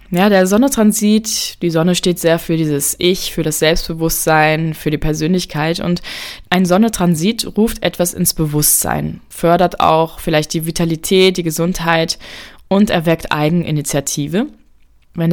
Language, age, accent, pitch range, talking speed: German, 20-39, German, 155-180 Hz, 135 wpm